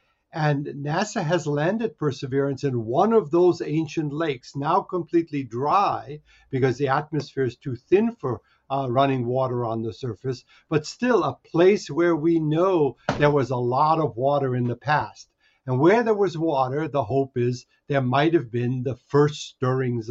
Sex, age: male, 60-79